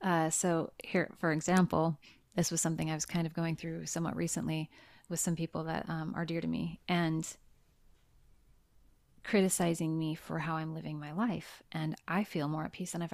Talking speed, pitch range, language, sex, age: 190 wpm, 160-180 Hz, English, female, 30-49